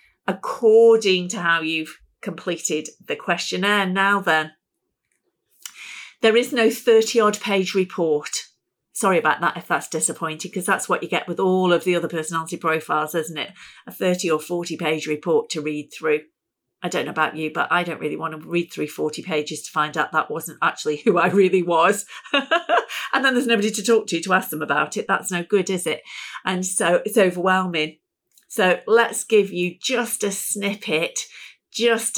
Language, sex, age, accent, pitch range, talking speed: English, female, 40-59, British, 170-235 Hz, 180 wpm